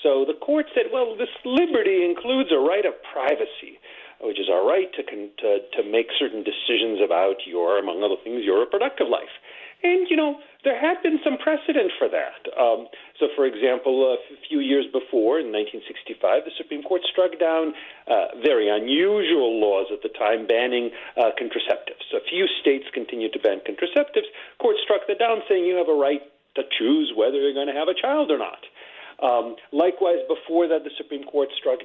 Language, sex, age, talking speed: English, male, 50-69, 195 wpm